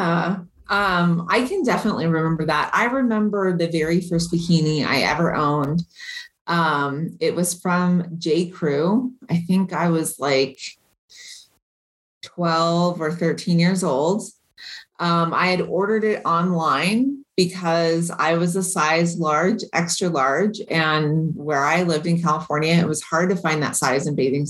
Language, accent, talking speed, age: English, American, 150 wpm, 30-49